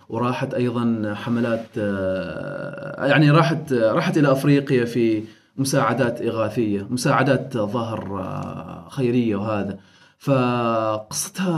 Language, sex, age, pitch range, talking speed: Arabic, male, 20-39, 115-190 Hz, 85 wpm